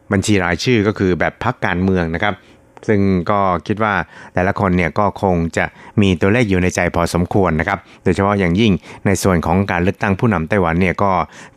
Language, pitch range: Thai, 85-105 Hz